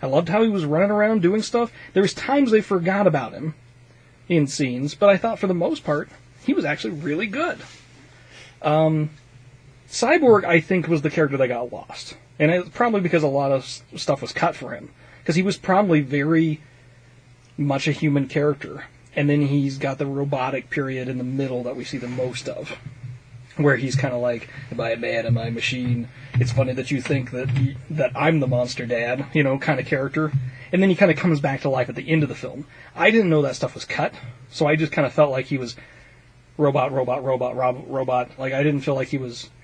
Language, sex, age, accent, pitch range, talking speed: English, male, 30-49, American, 125-165 Hz, 225 wpm